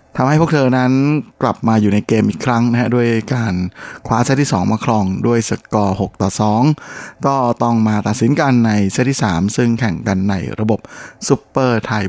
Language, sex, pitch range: Thai, male, 105-125 Hz